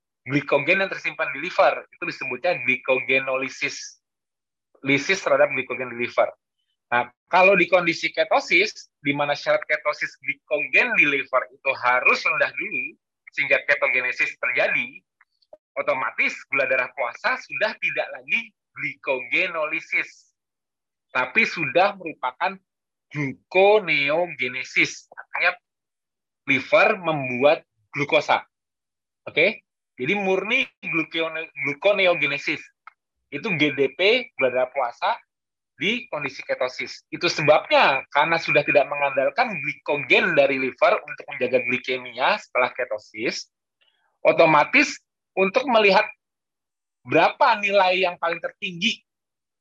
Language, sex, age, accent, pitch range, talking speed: Indonesian, male, 30-49, native, 140-195 Hz, 100 wpm